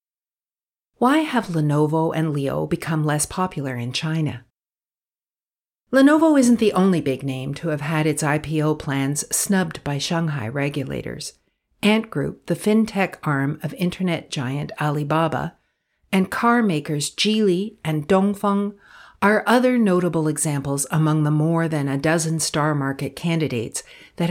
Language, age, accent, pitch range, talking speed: English, 50-69, American, 140-190 Hz, 135 wpm